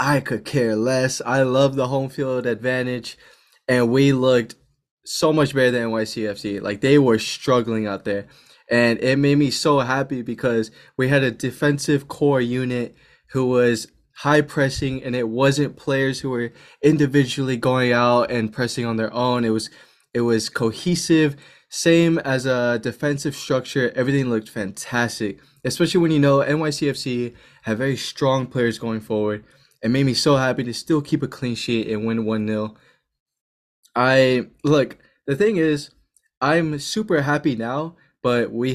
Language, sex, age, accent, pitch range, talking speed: English, male, 20-39, American, 115-140 Hz, 160 wpm